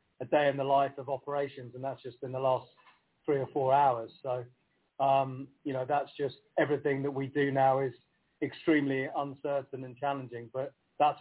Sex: male